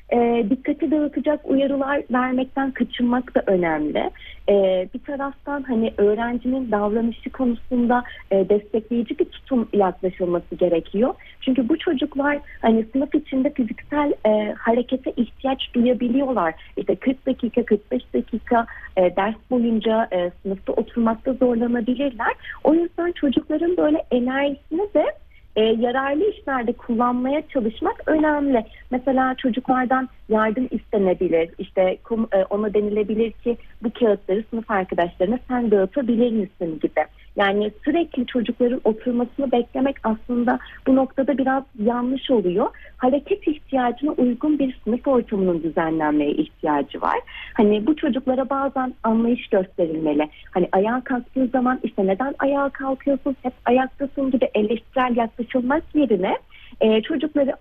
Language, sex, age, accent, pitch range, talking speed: Turkish, female, 40-59, native, 220-275 Hz, 115 wpm